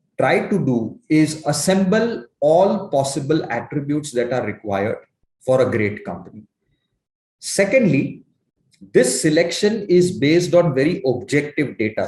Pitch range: 130-180 Hz